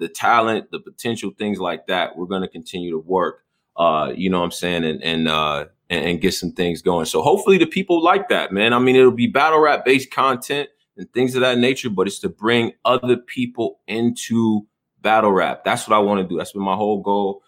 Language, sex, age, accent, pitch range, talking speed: English, male, 20-39, American, 95-125 Hz, 230 wpm